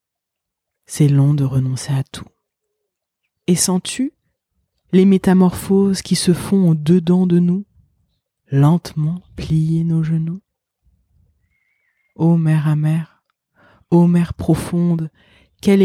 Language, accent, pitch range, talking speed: French, French, 130-175 Hz, 100 wpm